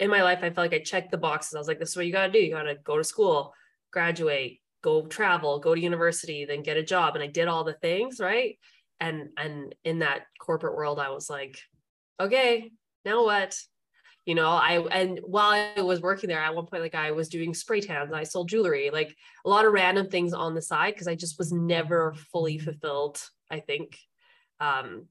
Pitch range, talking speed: 155-205 Hz, 230 wpm